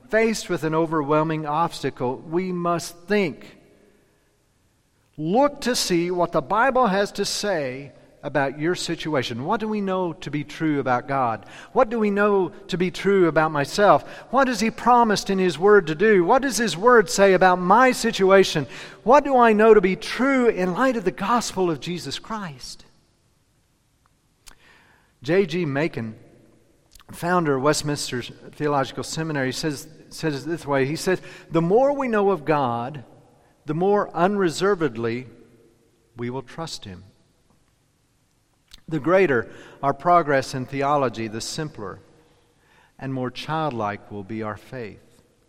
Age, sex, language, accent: 50-69, male, English, American